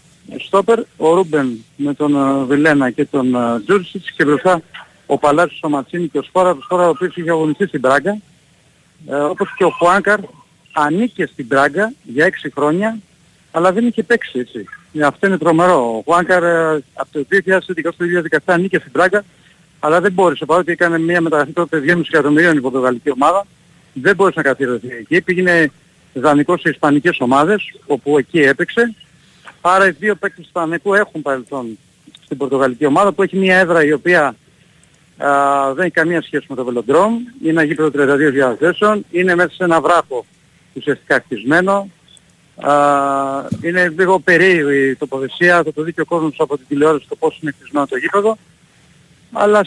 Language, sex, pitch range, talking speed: Greek, male, 145-185 Hz, 170 wpm